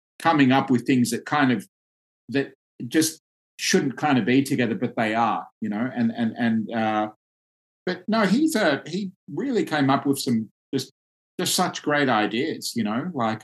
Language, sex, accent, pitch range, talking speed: English, male, Australian, 110-135 Hz, 185 wpm